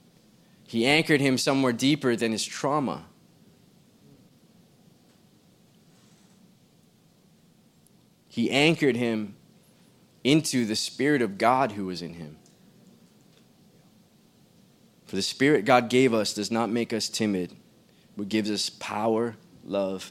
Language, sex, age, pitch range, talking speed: English, male, 20-39, 100-130 Hz, 105 wpm